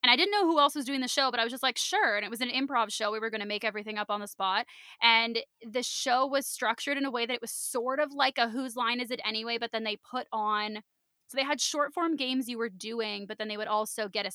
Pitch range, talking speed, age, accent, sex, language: 215-275 Hz, 305 wpm, 20-39, American, female, English